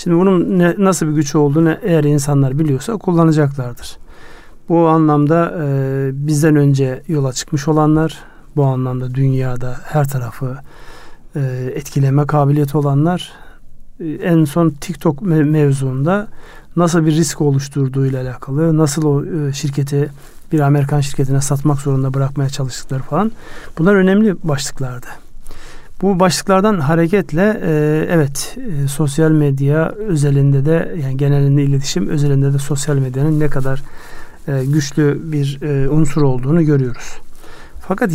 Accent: native